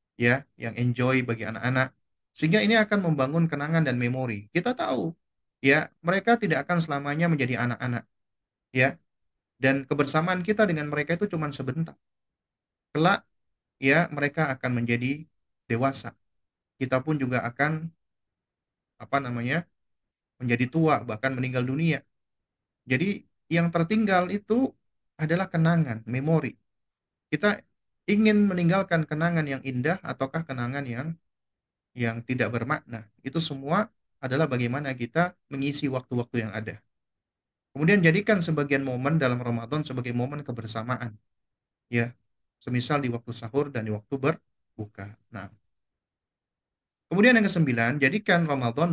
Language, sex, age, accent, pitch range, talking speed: Indonesian, male, 30-49, native, 120-165 Hz, 125 wpm